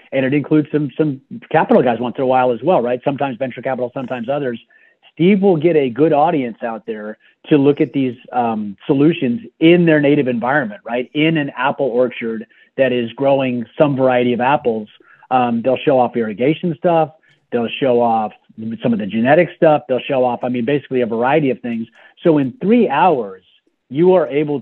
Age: 40-59